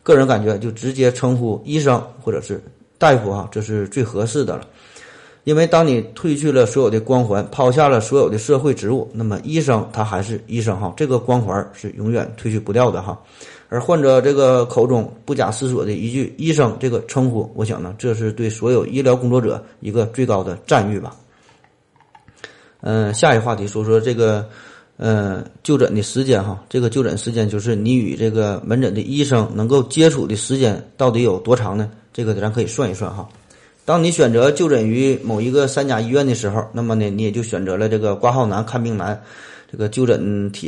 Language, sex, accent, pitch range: Chinese, male, native, 110-130 Hz